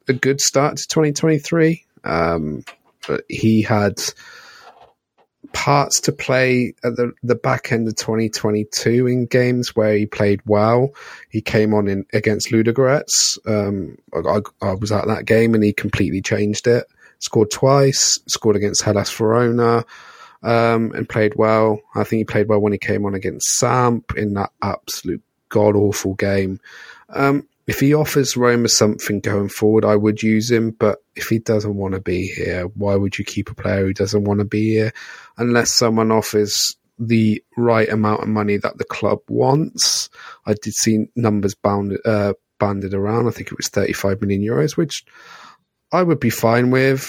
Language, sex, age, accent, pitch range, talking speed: English, male, 30-49, British, 105-120 Hz, 175 wpm